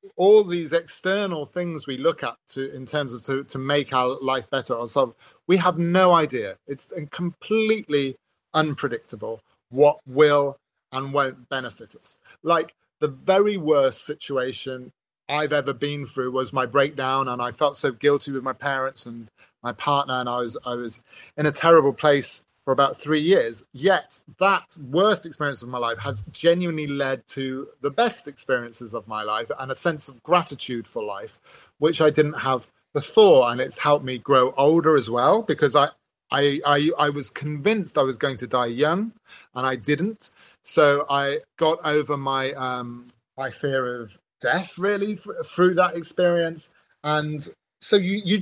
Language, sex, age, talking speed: Finnish, male, 30-49, 175 wpm